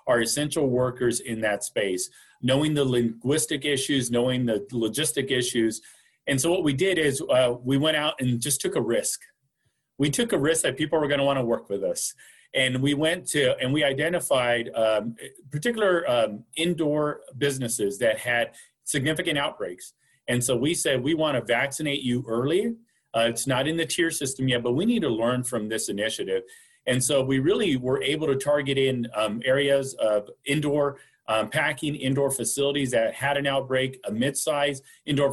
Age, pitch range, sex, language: 40-59, 125-150 Hz, male, English